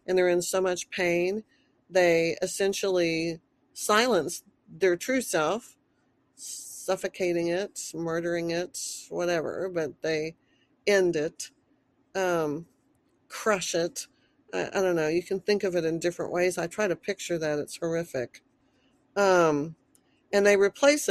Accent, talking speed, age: American, 135 wpm, 50-69